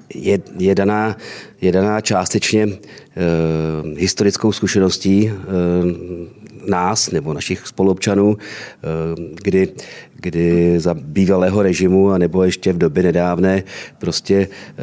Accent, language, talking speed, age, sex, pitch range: native, Czech, 90 wpm, 40-59, male, 85-100 Hz